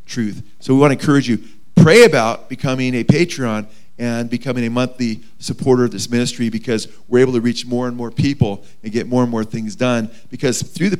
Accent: American